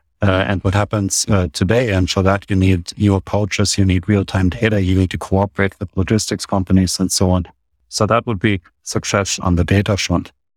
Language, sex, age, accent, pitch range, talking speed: English, male, 50-69, German, 95-110 Hz, 205 wpm